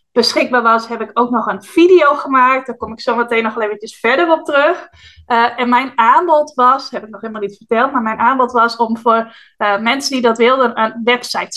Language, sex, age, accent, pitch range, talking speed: Dutch, female, 20-39, Dutch, 230-270 Hz, 220 wpm